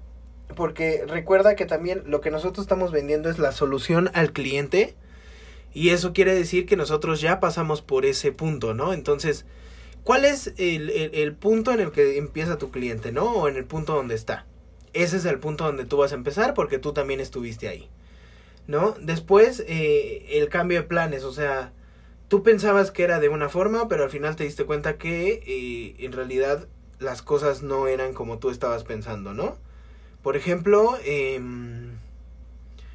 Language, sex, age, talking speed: Spanish, male, 20-39, 180 wpm